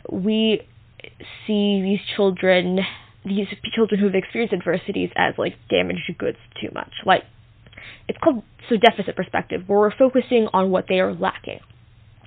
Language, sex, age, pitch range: English, female, 10-29, 175-205 Hz